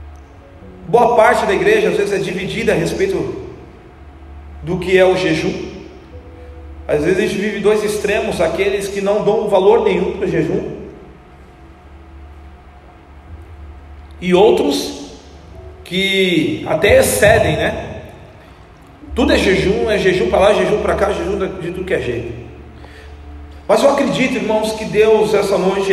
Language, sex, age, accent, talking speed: Portuguese, male, 40-59, Brazilian, 145 wpm